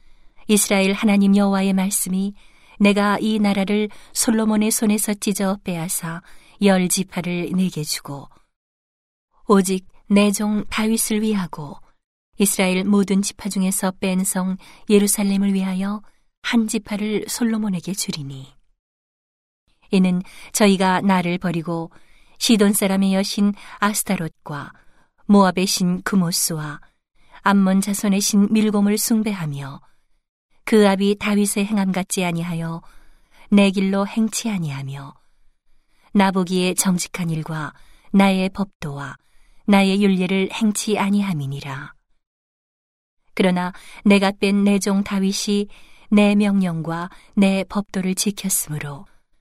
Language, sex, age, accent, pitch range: Korean, female, 40-59, native, 185-205 Hz